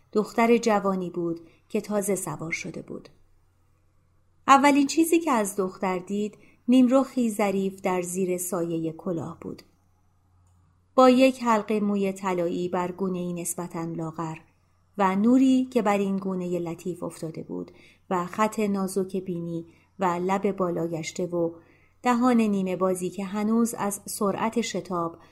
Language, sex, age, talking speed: Persian, female, 30-49, 135 wpm